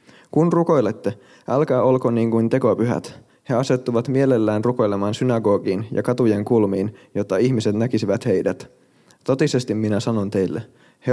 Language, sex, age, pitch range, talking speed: Finnish, male, 20-39, 105-125 Hz, 130 wpm